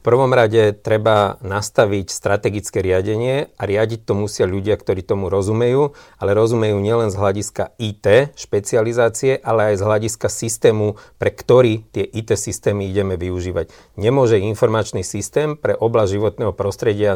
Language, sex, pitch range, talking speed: Slovak, male, 100-115 Hz, 145 wpm